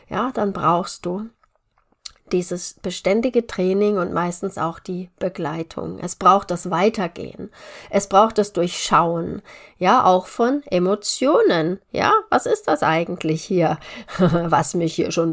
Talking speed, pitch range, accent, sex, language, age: 135 wpm, 175-220 Hz, German, female, German, 30-49